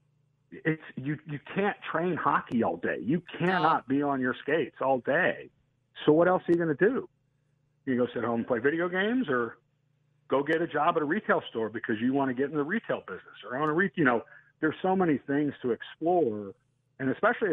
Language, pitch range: English, 120-150 Hz